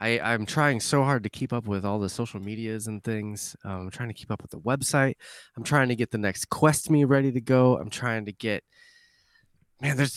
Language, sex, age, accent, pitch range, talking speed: English, male, 20-39, American, 105-135 Hz, 240 wpm